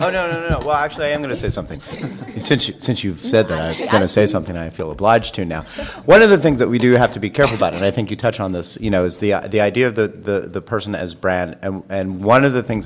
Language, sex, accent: English, male, American